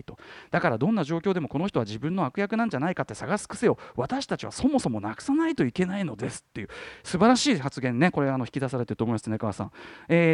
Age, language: 40-59, Japanese